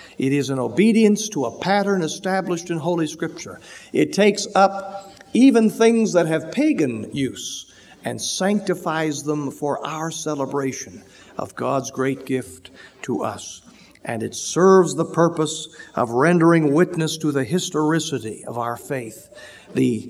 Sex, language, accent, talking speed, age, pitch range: male, English, American, 140 wpm, 50-69, 125-165 Hz